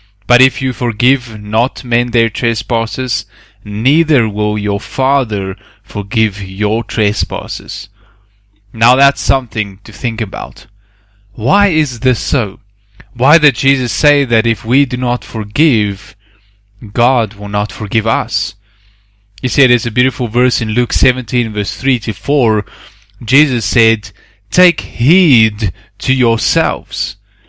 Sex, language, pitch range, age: male, English, 105-130 Hz, 20-39